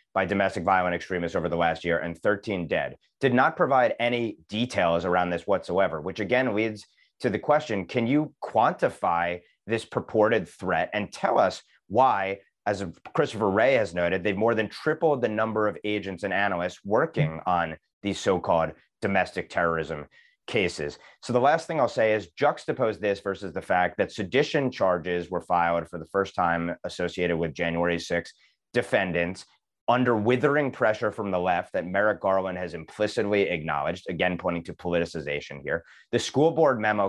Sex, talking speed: male, 170 wpm